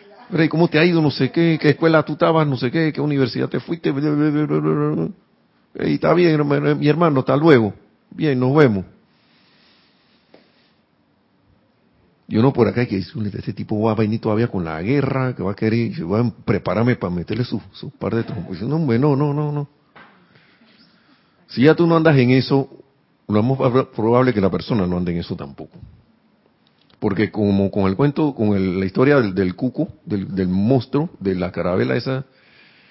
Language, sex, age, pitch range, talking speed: Spanish, male, 50-69, 100-140 Hz, 180 wpm